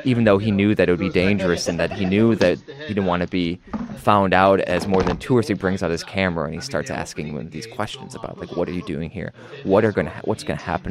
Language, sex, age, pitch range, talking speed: English, male, 20-39, 95-135 Hz, 285 wpm